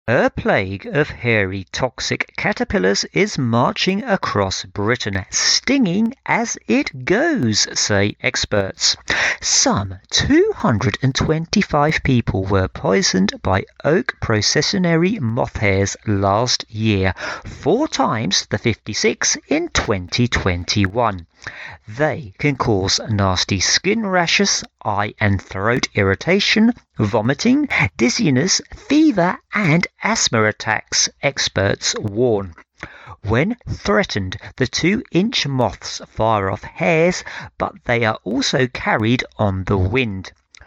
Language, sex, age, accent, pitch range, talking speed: English, male, 40-59, British, 100-155 Hz, 100 wpm